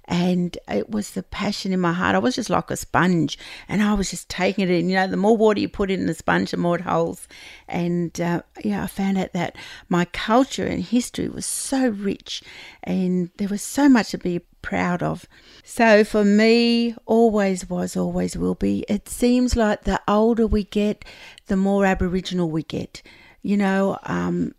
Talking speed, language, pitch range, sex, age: 200 wpm, English, 175-220 Hz, female, 60-79